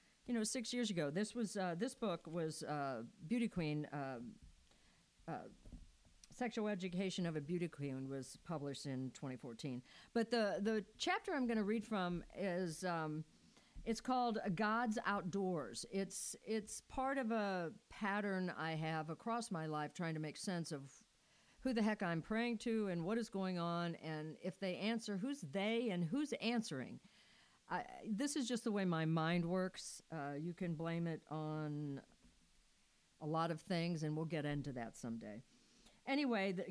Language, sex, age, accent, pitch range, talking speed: English, female, 50-69, American, 150-215 Hz, 170 wpm